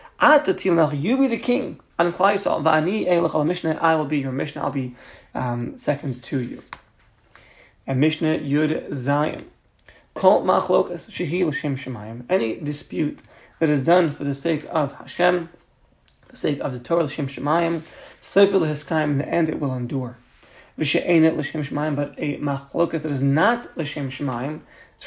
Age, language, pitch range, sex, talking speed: 30-49, English, 140-170 Hz, male, 130 wpm